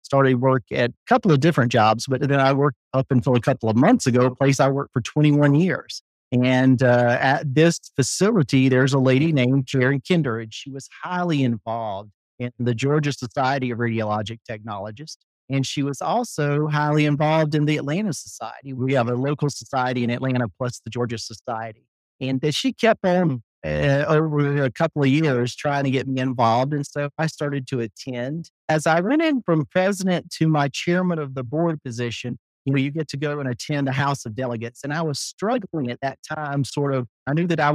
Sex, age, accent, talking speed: male, 40-59, American, 205 wpm